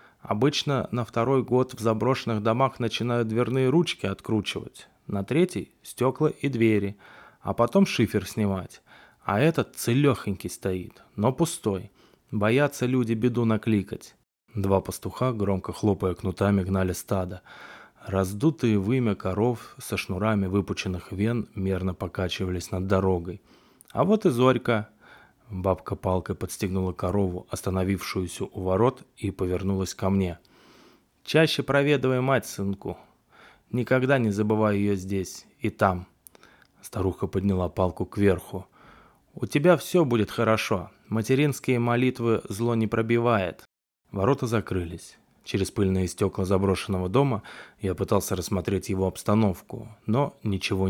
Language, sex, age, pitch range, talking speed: Russian, male, 20-39, 95-120 Hz, 120 wpm